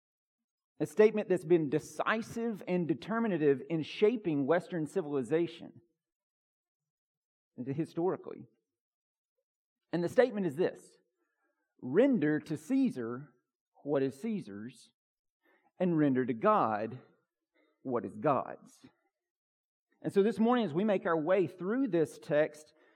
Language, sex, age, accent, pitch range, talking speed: English, male, 40-59, American, 145-210 Hz, 110 wpm